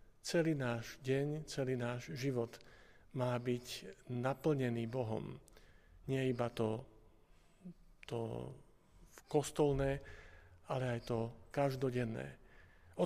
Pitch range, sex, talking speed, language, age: 120-140 Hz, male, 90 wpm, Slovak, 50-69